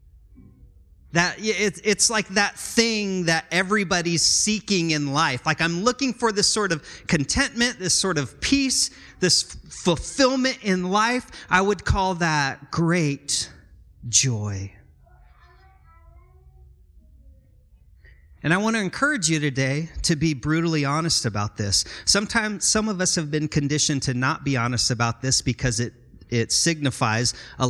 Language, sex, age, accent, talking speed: English, male, 30-49, American, 135 wpm